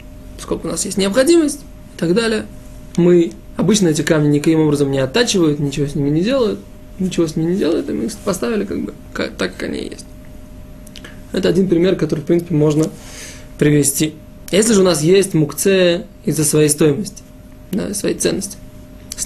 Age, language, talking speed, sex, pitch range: 20-39, Russian, 180 wpm, male, 140-175 Hz